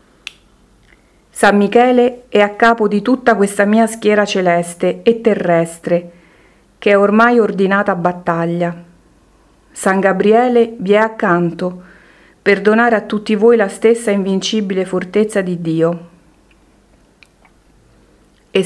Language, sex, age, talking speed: Italian, female, 40-59, 115 wpm